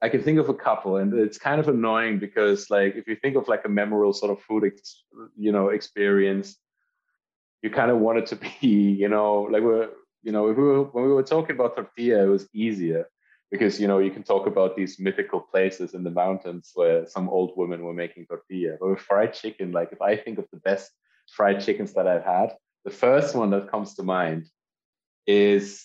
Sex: male